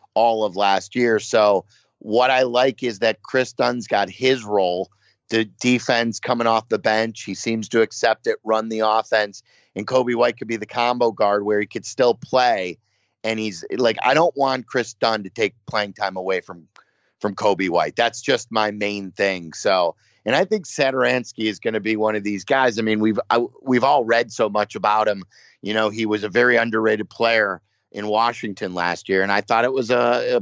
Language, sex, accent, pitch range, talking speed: English, male, American, 105-130 Hz, 210 wpm